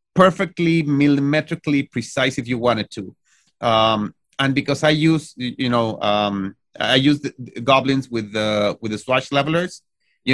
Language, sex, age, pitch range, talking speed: English, male, 30-49, 120-150 Hz, 155 wpm